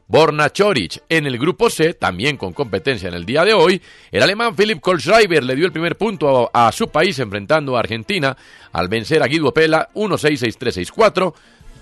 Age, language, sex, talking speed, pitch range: 40-59, Spanish, male, 185 wpm, 125-180 Hz